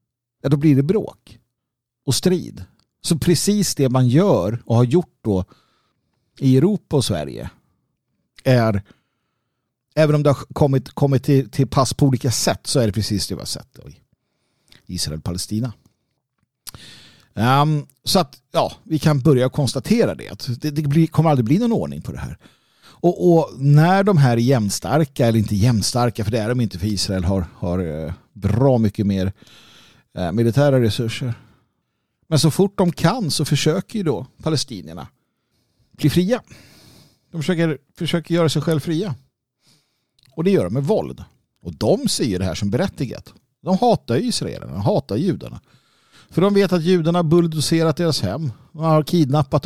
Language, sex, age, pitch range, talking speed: Swedish, male, 50-69, 115-155 Hz, 170 wpm